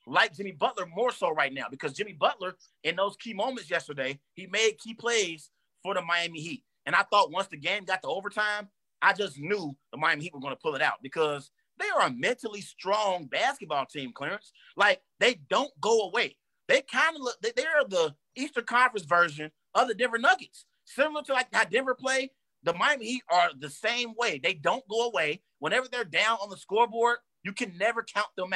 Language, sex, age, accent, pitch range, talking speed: English, male, 30-49, American, 185-245 Hz, 210 wpm